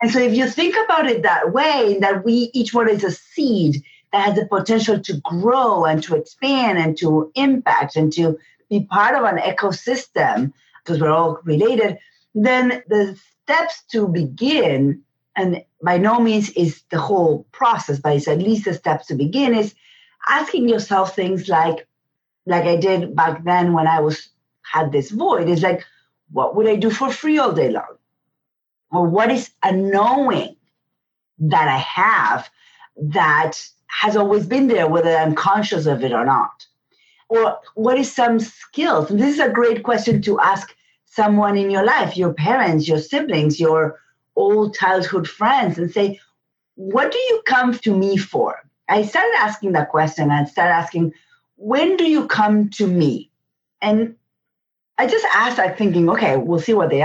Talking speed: 175 wpm